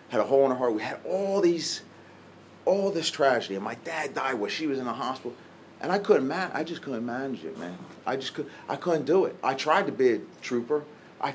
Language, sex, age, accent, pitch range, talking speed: English, male, 30-49, American, 115-170 Hz, 250 wpm